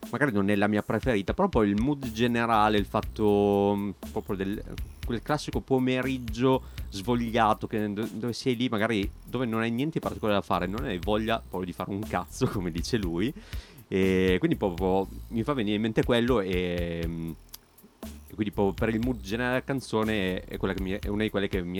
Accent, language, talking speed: native, Italian, 195 wpm